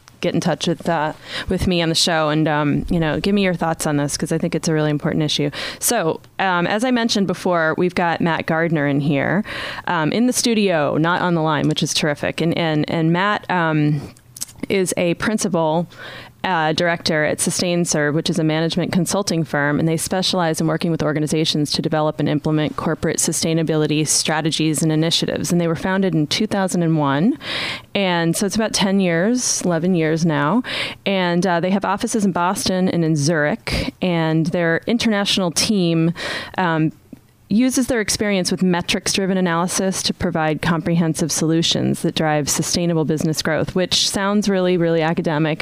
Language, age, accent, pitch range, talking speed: English, 20-39, American, 155-190 Hz, 175 wpm